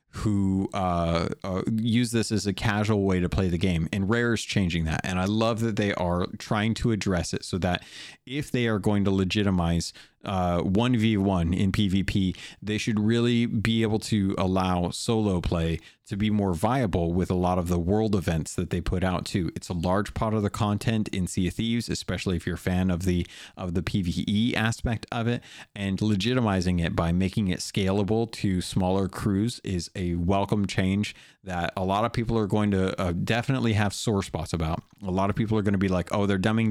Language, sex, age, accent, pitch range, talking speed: English, male, 30-49, American, 90-110 Hz, 210 wpm